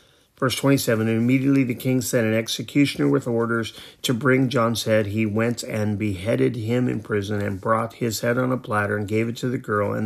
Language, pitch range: English, 110-125 Hz